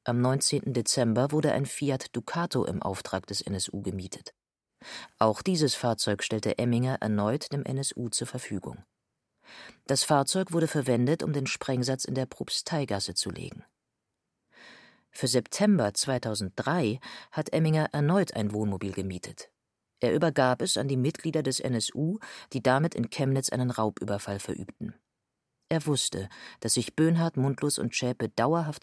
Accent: German